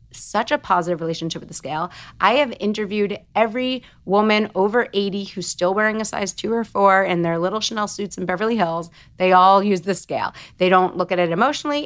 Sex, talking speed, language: female, 205 wpm, English